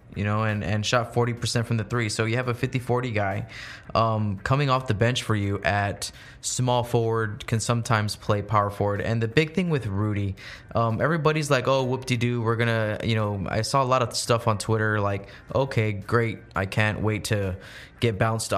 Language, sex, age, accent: English, male, 20-39, American